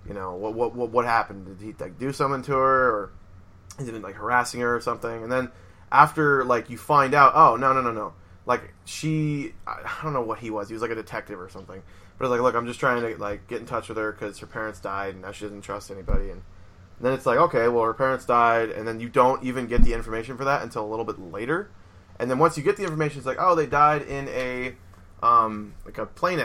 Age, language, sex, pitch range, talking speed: 20-39, English, male, 105-135 Hz, 265 wpm